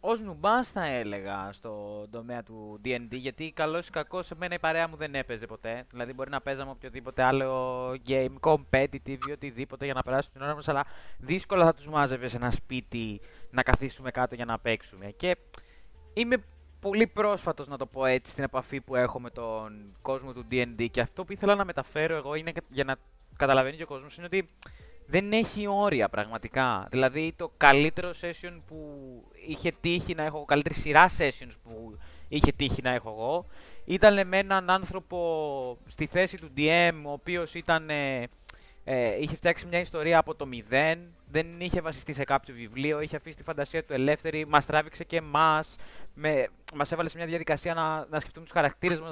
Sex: male